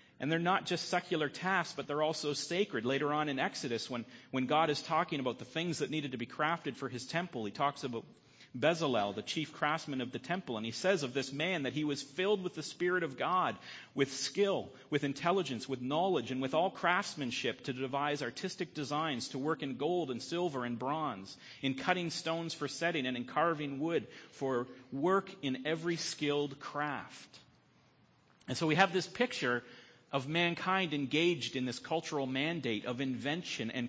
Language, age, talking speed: English, 40-59, 190 wpm